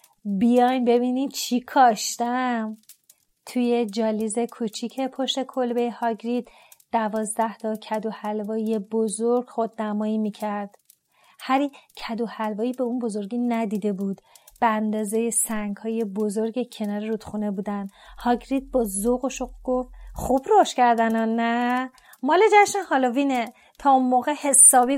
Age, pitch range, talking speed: 30-49, 225-265 Hz, 120 wpm